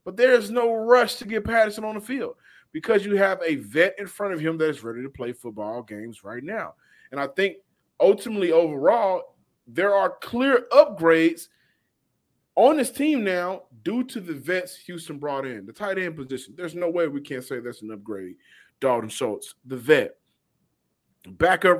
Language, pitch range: English, 125-180 Hz